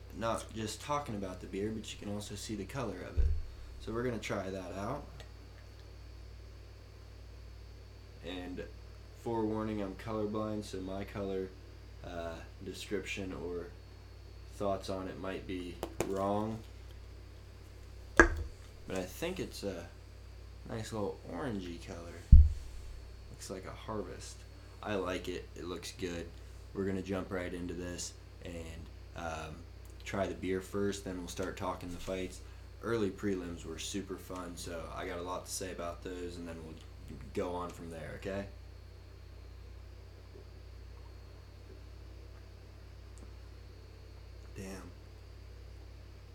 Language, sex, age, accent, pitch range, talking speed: English, male, 20-39, American, 90-100 Hz, 130 wpm